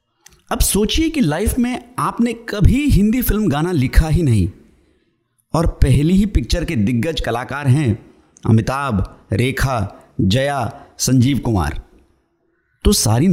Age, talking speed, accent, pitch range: 50-69, 125 wpm, native, 110-165 Hz